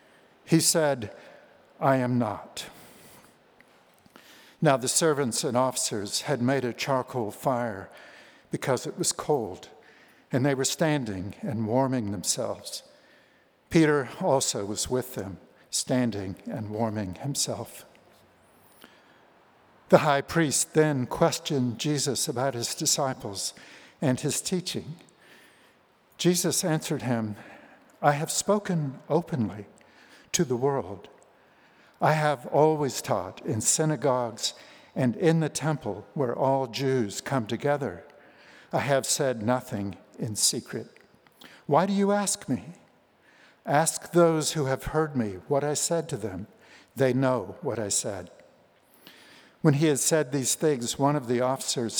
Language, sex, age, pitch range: English, male, 60-79, 125-160 Hz